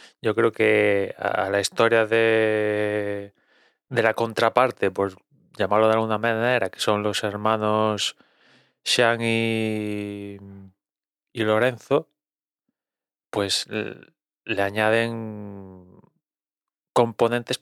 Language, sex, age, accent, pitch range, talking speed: Spanish, male, 30-49, Spanish, 100-115 Hz, 100 wpm